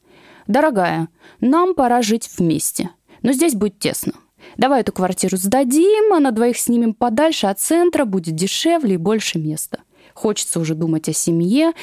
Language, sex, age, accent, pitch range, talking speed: Russian, female, 20-39, native, 180-275 Hz, 150 wpm